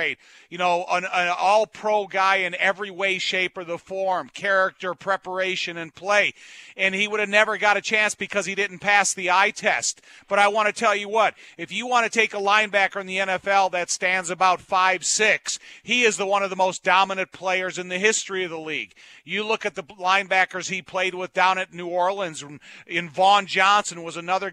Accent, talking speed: American, 215 wpm